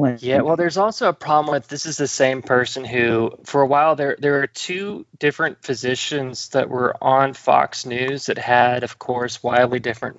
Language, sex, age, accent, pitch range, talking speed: English, male, 20-39, American, 125-155 Hz, 195 wpm